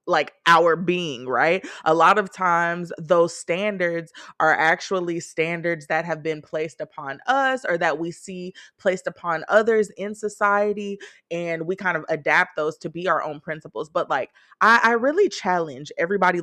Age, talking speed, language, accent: 20-39, 170 wpm, English, American